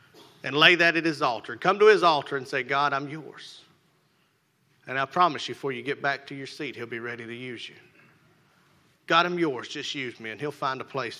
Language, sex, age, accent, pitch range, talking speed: English, male, 40-59, American, 140-175 Hz, 230 wpm